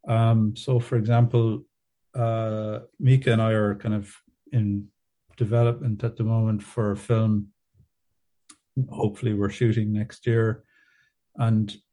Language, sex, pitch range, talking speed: English, male, 105-115 Hz, 125 wpm